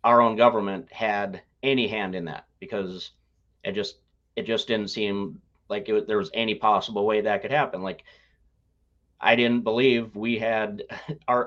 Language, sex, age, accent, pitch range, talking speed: English, male, 30-49, American, 100-125 Hz, 160 wpm